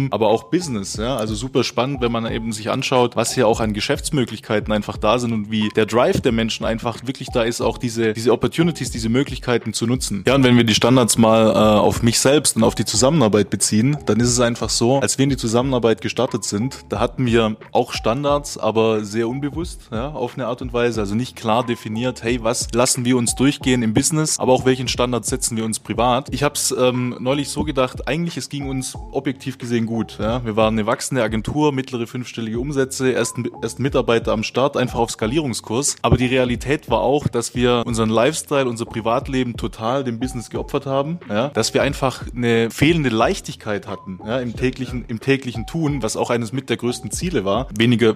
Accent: German